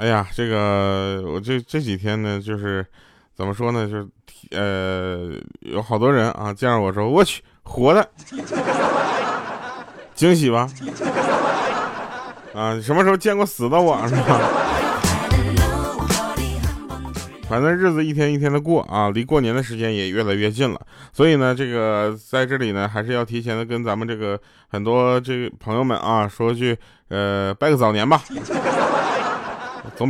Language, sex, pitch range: Chinese, male, 100-140 Hz